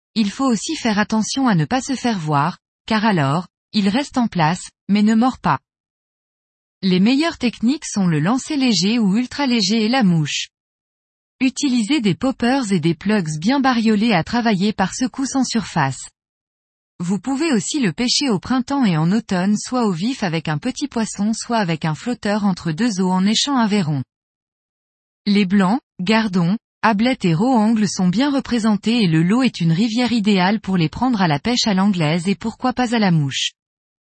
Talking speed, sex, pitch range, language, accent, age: 185 wpm, female, 175-245 Hz, French, French, 20-39